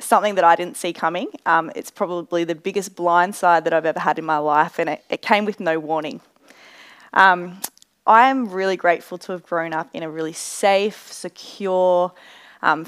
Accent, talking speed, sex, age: Australian, 190 wpm, female, 20-39